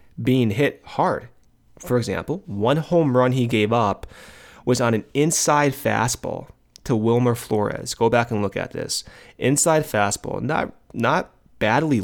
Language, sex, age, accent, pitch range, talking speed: English, male, 30-49, American, 105-125 Hz, 150 wpm